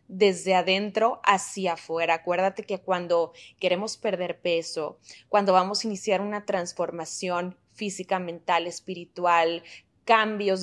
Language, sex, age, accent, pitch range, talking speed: Spanish, female, 20-39, Mexican, 185-230 Hz, 115 wpm